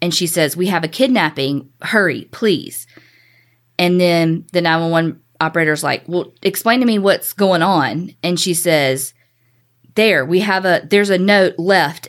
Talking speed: 165 wpm